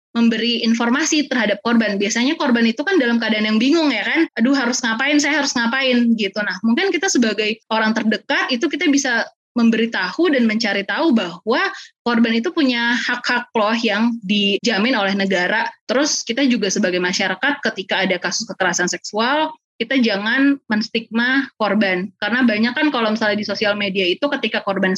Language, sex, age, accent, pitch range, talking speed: Indonesian, female, 20-39, native, 210-270 Hz, 165 wpm